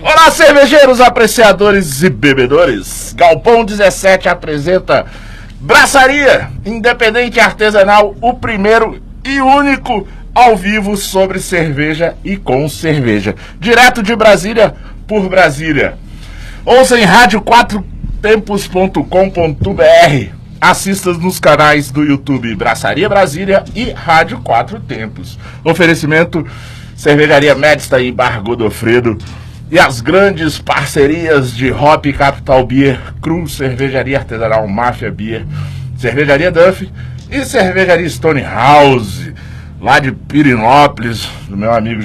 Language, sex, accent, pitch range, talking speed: Portuguese, male, Brazilian, 125-200 Hz, 105 wpm